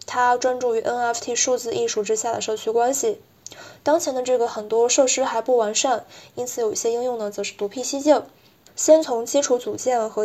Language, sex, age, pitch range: Chinese, female, 20-39, 220-265 Hz